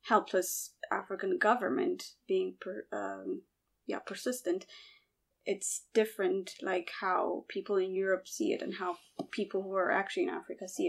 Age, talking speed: 20-39, 145 wpm